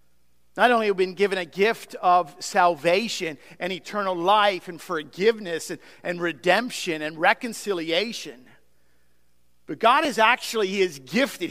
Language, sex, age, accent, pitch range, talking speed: English, male, 50-69, American, 180-265 Hz, 140 wpm